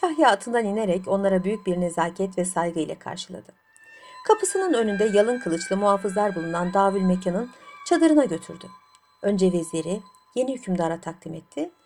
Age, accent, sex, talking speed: 60-79, native, female, 135 wpm